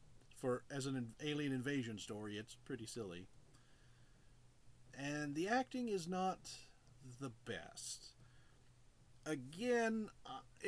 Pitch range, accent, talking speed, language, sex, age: 120-140 Hz, American, 105 wpm, English, male, 40-59